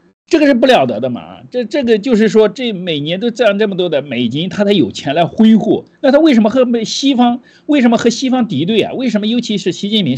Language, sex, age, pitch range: Chinese, male, 50-69, 190-270 Hz